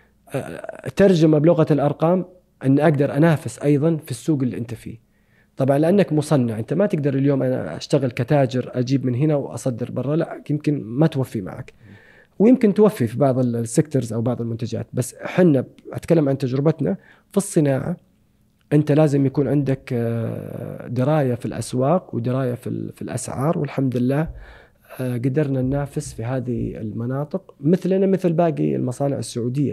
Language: Arabic